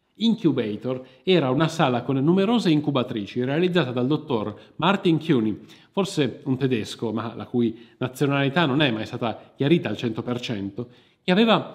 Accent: native